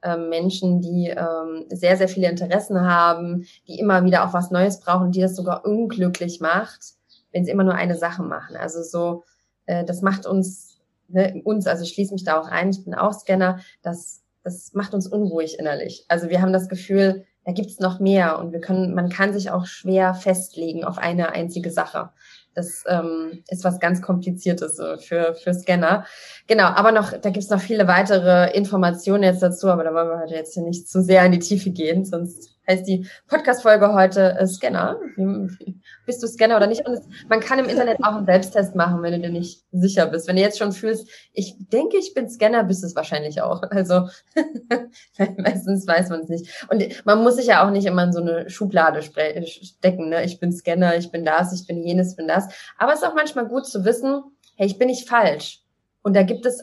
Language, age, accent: German, 20-39, German